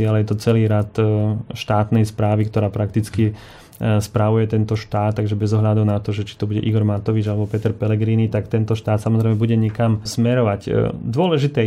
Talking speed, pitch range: 175 wpm, 105-115 Hz